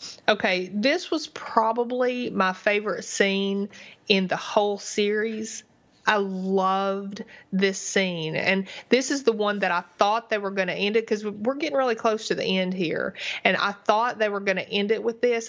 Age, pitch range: 30-49, 190-225 Hz